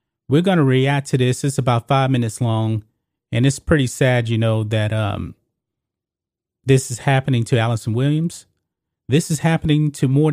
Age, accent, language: 30-49, American, English